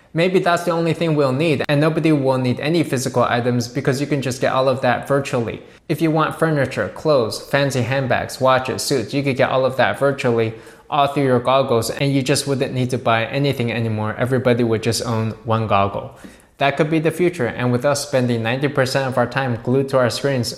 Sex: male